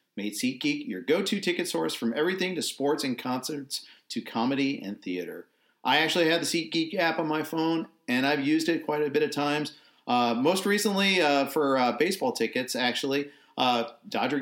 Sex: male